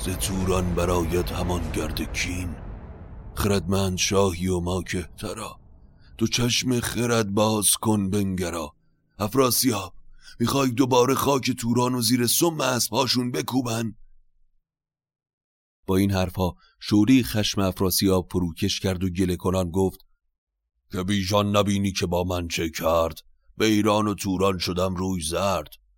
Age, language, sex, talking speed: 40-59, Persian, male, 120 wpm